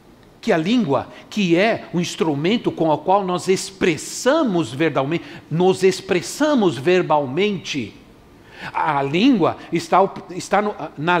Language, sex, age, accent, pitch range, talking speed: Portuguese, male, 60-79, Brazilian, 165-205 Hz, 90 wpm